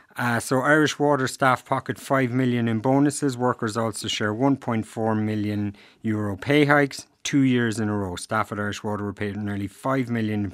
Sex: male